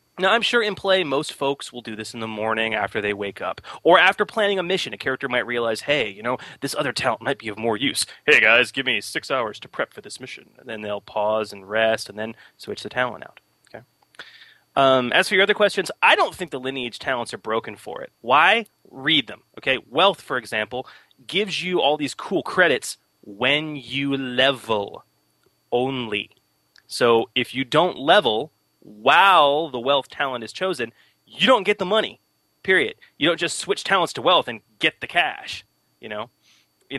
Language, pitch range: English, 120-195 Hz